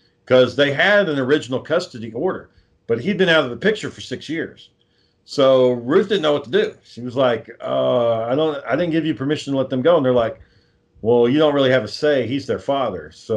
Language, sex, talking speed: English, male, 240 wpm